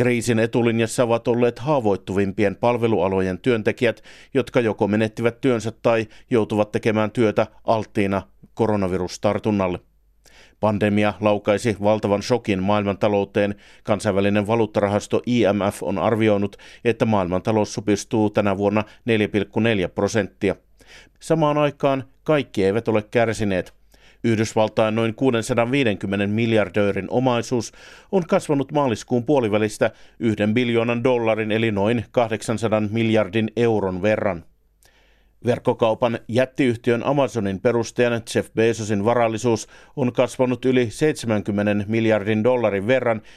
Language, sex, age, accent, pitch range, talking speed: Finnish, male, 50-69, native, 105-120 Hz, 100 wpm